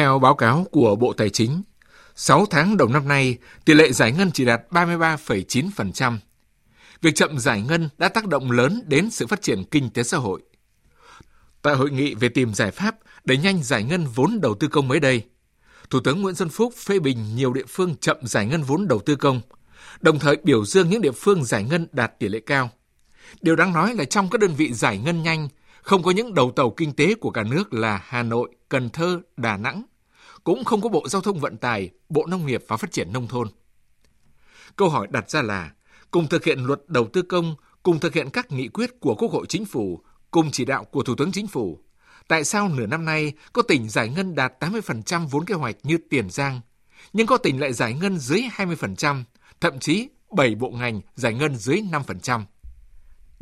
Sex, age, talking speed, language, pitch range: male, 60-79, 215 wpm, Vietnamese, 125-175 Hz